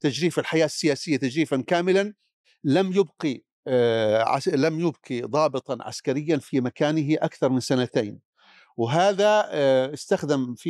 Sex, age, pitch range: male, 50-69, 135-185 Hz